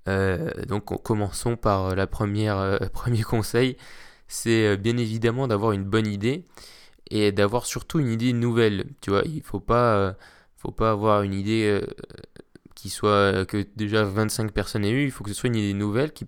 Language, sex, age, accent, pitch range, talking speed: French, male, 20-39, French, 100-120 Hz, 190 wpm